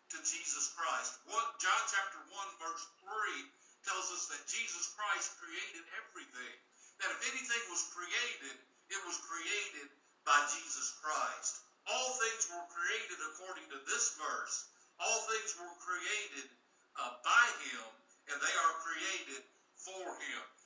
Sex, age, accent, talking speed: male, 60-79, American, 140 wpm